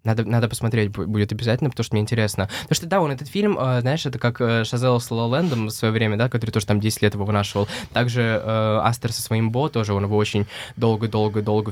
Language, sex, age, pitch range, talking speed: Russian, male, 20-39, 110-130 Hz, 225 wpm